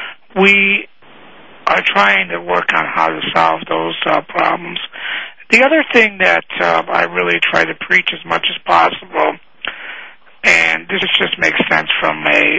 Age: 60-79